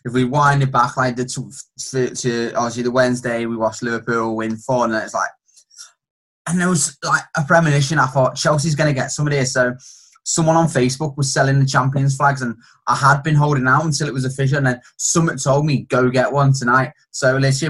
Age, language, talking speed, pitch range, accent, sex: 10-29, English, 215 wpm, 120-140 Hz, British, male